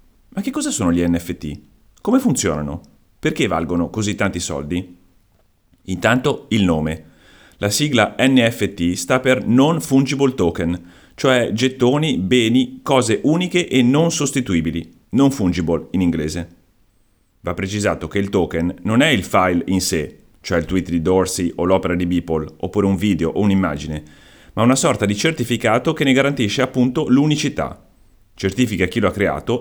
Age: 30-49